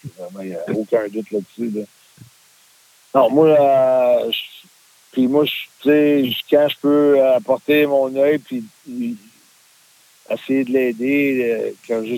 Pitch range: 115-135 Hz